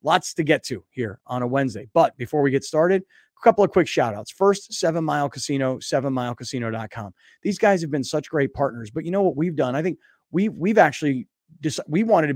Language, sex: English, male